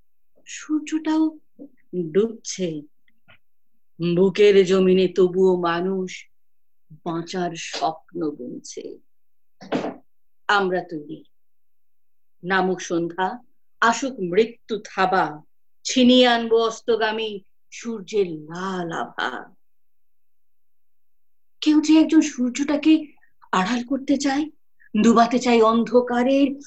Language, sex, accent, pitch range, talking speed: Bengali, female, native, 190-280 Hz, 60 wpm